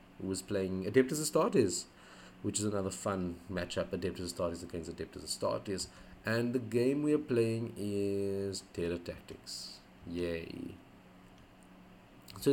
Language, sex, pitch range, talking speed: English, male, 90-110 Hz, 120 wpm